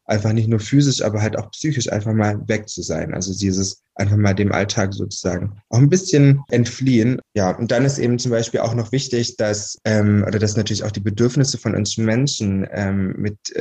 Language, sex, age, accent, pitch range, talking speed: German, male, 20-39, German, 100-120 Hz, 205 wpm